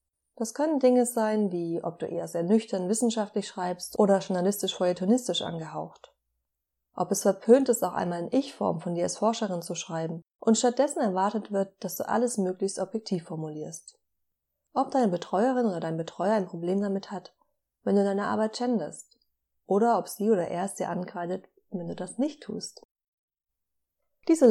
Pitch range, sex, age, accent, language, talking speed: 175-235 Hz, female, 30-49, German, German, 170 wpm